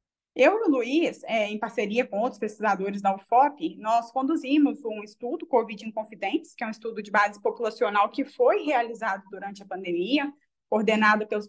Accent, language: Brazilian, Portuguese